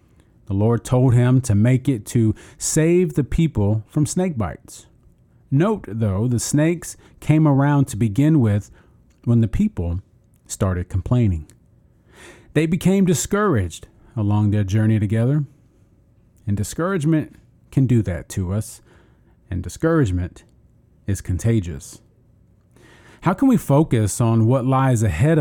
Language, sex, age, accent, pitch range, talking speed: English, male, 40-59, American, 105-145 Hz, 130 wpm